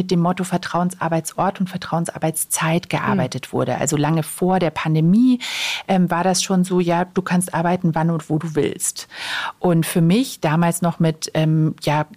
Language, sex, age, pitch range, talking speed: German, female, 40-59, 170-200 Hz, 170 wpm